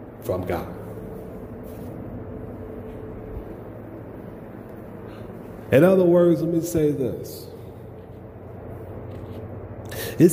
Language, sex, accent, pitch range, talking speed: English, male, American, 110-140 Hz, 60 wpm